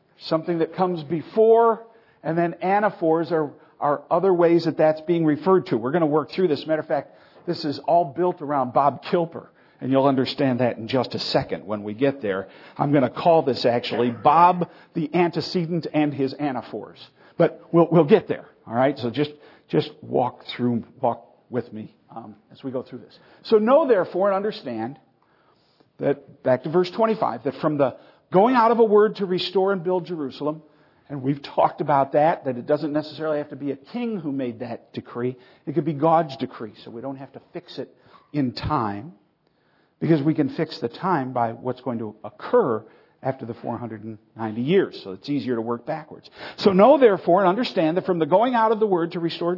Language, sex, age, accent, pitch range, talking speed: English, male, 50-69, American, 130-175 Hz, 200 wpm